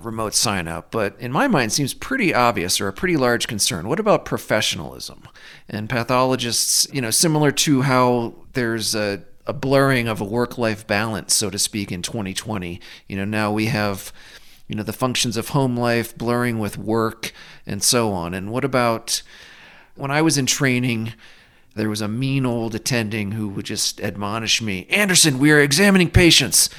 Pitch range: 105-130 Hz